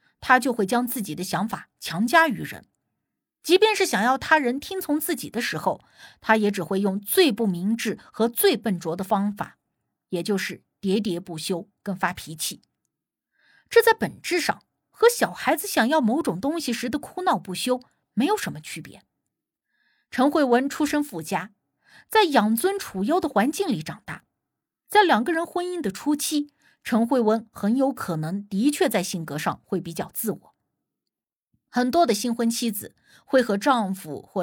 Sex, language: female, Chinese